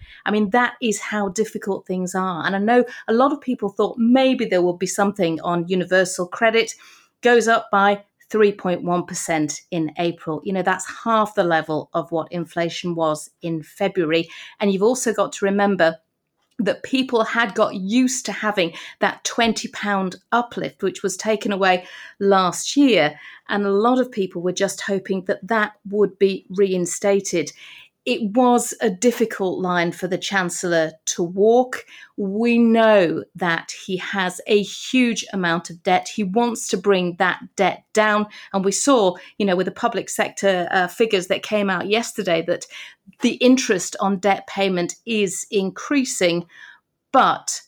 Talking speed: 160 wpm